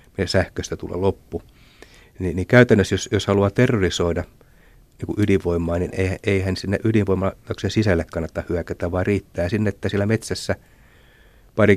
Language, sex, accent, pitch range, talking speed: Finnish, male, native, 85-105 Hz, 135 wpm